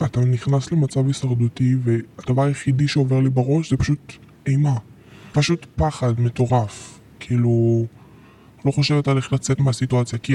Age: 20-39